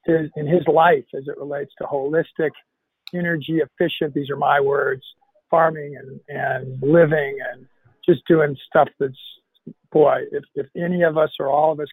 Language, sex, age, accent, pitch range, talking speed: English, male, 50-69, American, 150-190 Hz, 170 wpm